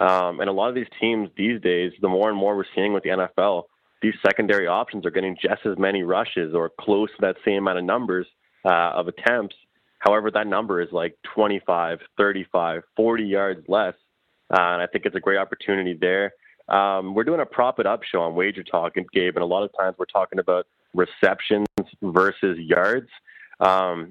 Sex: male